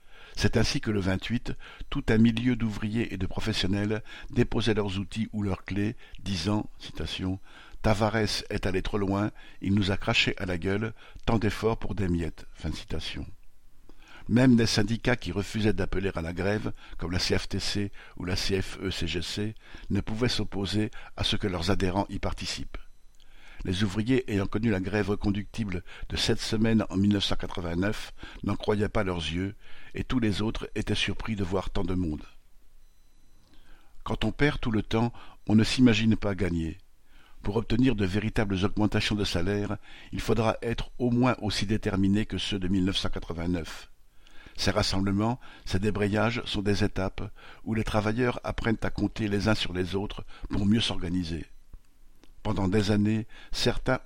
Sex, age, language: male, 60-79, French